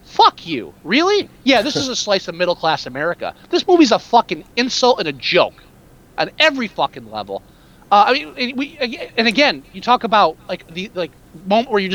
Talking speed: 190 wpm